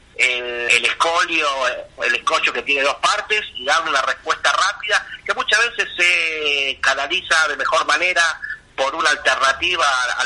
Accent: Argentinian